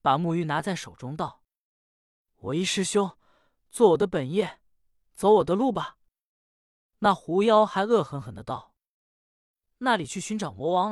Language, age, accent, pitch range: Chinese, 20-39, native, 130-205 Hz